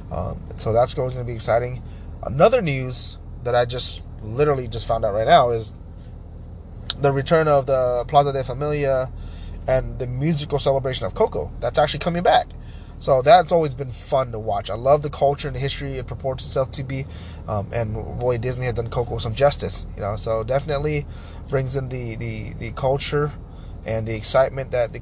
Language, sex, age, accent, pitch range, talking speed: English, male, 20-39, American, 95-130 Hz, 190 wpm